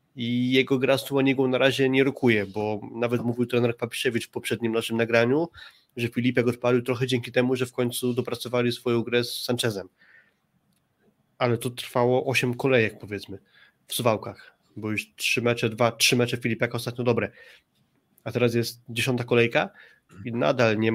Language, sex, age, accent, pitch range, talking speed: Polish, male, 20-39, native, 120-130 Hz, 165 wpm